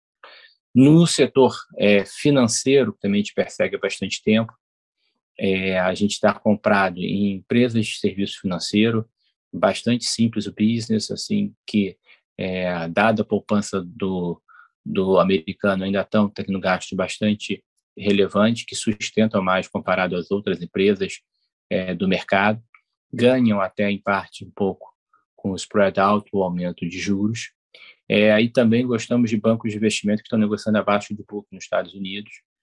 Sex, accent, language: male, Brazilian, Portuguese